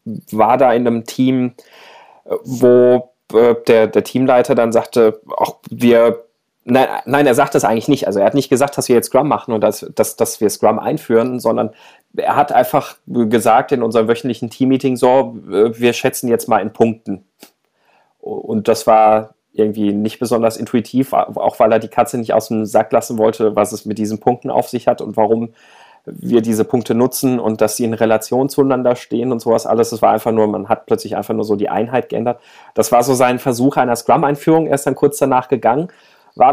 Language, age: German, 30-49